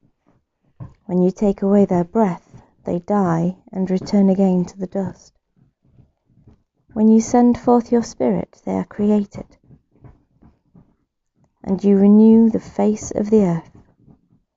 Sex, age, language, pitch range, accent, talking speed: female, 30-49, English, 180-225 Hz, British, 130 wpm